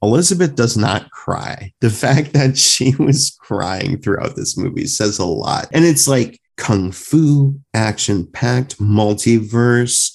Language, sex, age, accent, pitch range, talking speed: English, male, 30-49, American, 100-125 Hz, 135 wpm